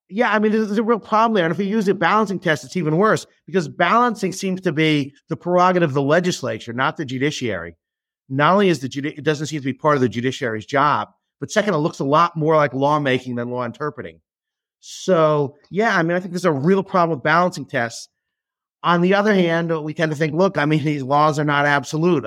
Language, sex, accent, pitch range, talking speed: English, male, American, 135-180 Hz, 230 wpm